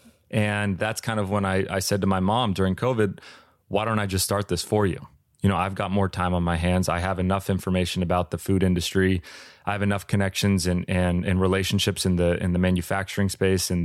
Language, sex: English, male